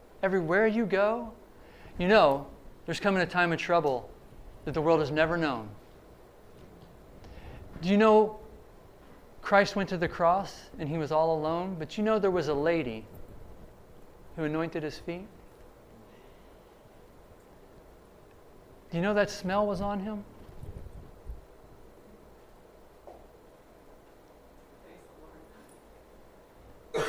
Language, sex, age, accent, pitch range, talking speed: English, male, 50-69, American, 135-175 Hz, 115 wpm